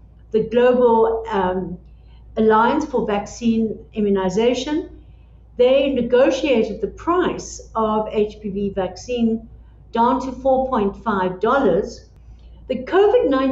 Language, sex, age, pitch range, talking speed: English, female, 60-79, 205-260 Hz, 85 wpm